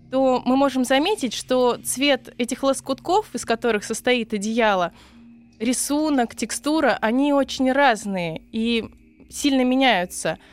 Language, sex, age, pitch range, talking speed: Russian, female, 20-39, 220-265 Hz, 115 wpm